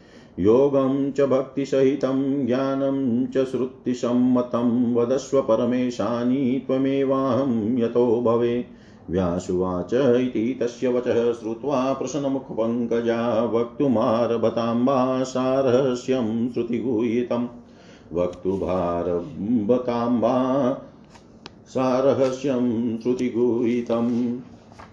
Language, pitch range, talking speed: Hindi, 115-135 Hz, 40 wpm